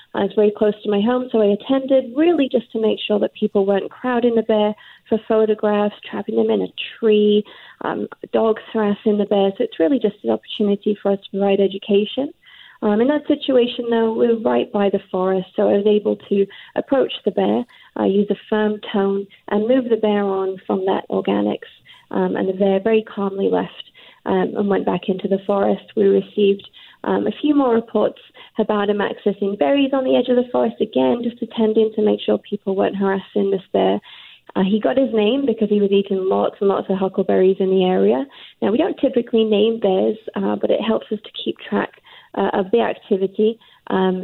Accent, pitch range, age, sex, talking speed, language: British, 195-225 Hz, 30-49, female, 210 wpm, English